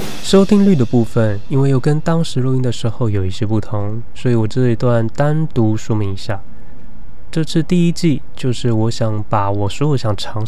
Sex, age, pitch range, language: male, 20-39, 105-130 Hz, Chinese